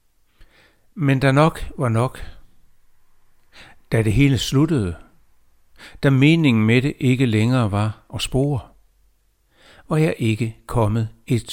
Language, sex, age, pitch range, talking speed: Danish, male, 60-79, 100-140 Hz, 120 wpm